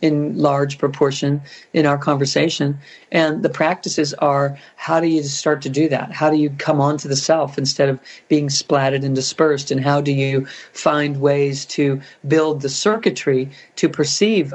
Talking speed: 175 wpm